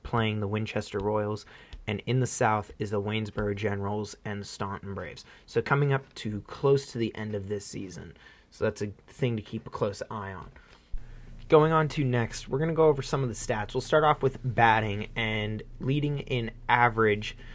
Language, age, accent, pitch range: English, 20-39, American, 110-130 Hz